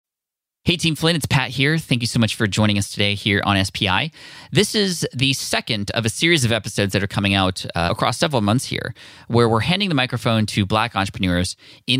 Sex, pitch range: male, 100-125 Hz